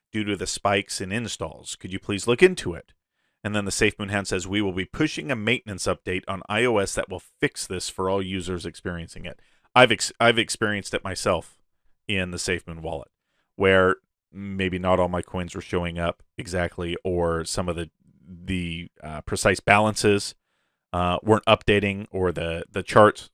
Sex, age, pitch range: male, 30-49, 90-115 Hz